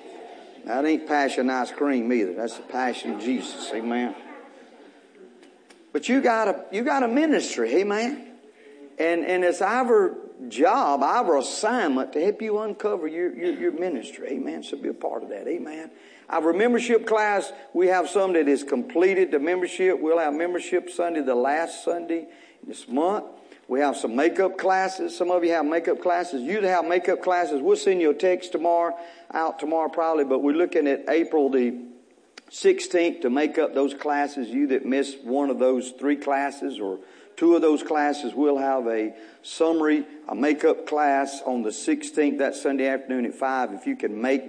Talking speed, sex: 175 wpm, male